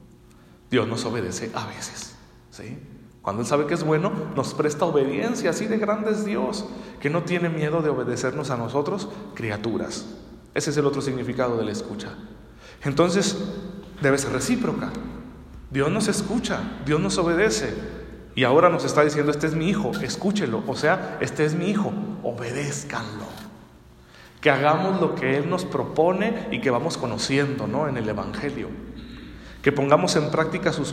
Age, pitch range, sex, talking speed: 40-59, 125-180 Hz, male, 160 wpm